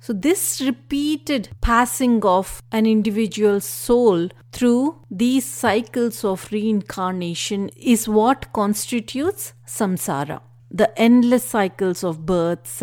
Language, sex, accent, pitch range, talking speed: English, female, Indian, 170-240 Hz, 100 wpm